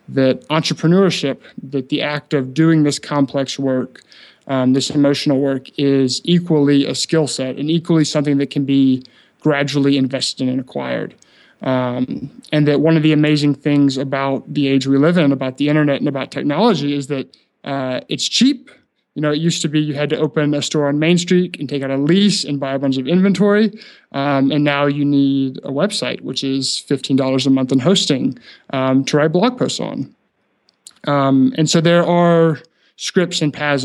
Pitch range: 135-155 Hz